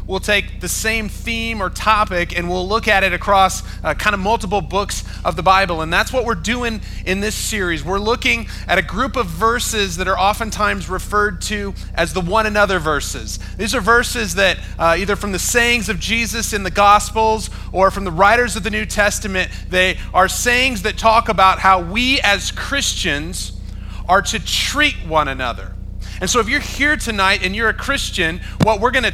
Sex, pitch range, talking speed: male, 180-225 Hz, 200 wpm